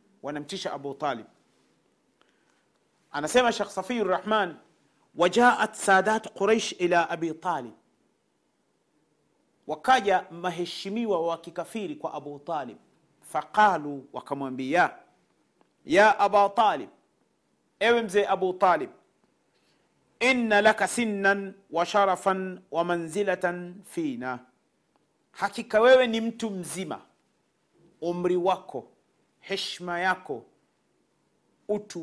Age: 40-59